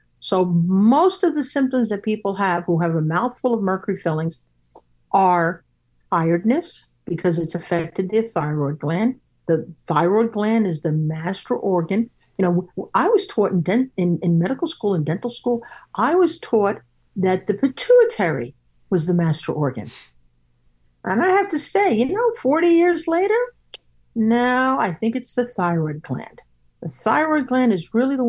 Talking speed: 160 wpm